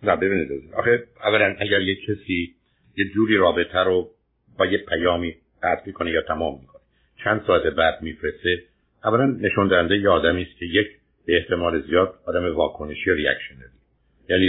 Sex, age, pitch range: male, 50-69, 85-110 Hz